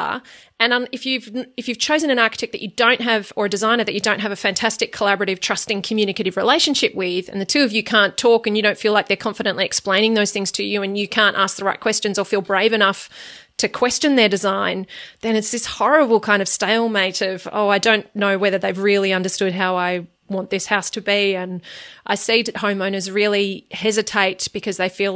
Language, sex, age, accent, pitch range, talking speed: English, female, 30-49, Australian, 195-230 Hz, 220 wpm